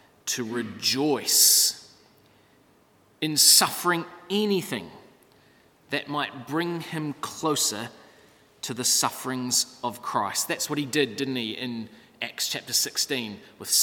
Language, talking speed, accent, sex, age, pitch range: English, 115 wpm, Australian, male, 30-49, 120-165 Hz